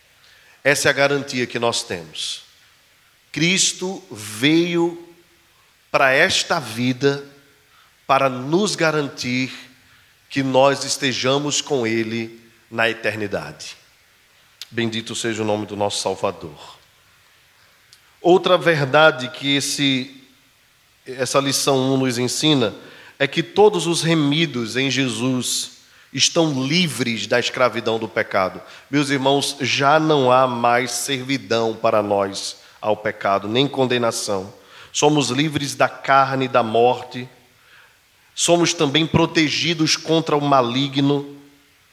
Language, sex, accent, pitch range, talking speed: Portuguese, male, Brazilian, 120-150 Hz, 110 wpm